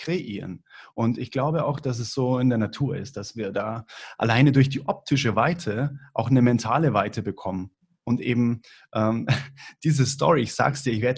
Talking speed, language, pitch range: 190 wpm, German, 120-160 Hz